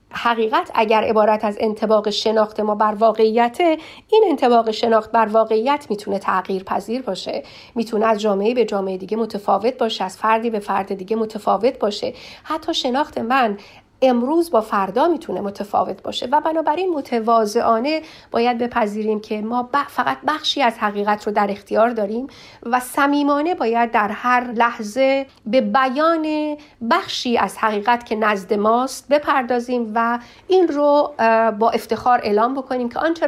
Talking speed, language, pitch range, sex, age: 145 wpm, Persian, 215-260 Hz, female, 40-59